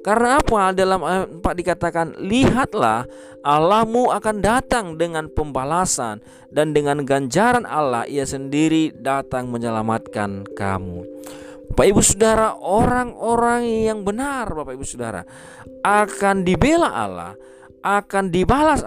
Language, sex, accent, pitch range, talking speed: Indonesian, male, native, 130-220 Hz, 110 wpm